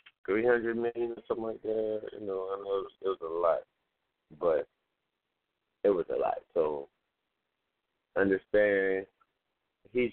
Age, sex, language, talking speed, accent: 30-49, male, English, 130 wpm, American